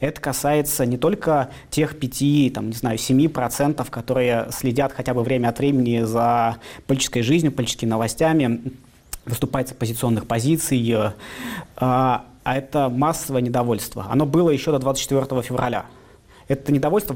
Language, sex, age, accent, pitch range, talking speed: Russian, male, 20-39, native, 125-145 Hz, 135 wpm